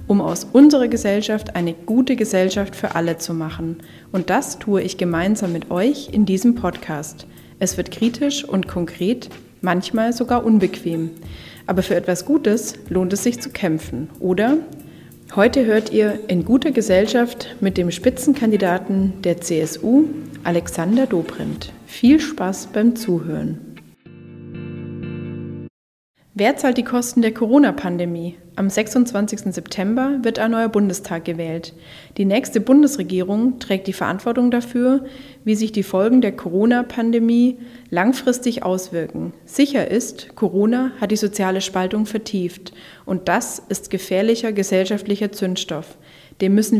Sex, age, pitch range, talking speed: female, 30-49, 185-235 Hz, 130 wpm